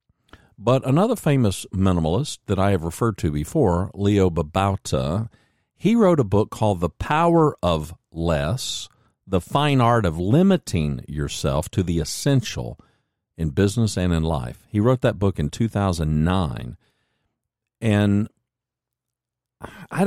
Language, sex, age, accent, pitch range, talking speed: English, male, 50-69, American, 90-115 Hz, 130 wpm